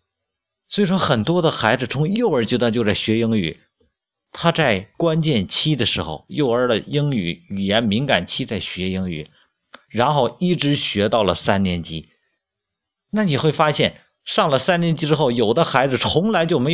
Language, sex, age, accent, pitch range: Chinese, male, 50-69, native, 105-165 Hz